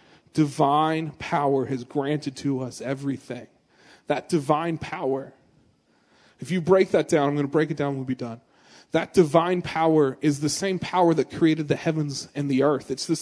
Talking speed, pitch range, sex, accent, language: 180 wpm, 140-175 Hz, male, American, English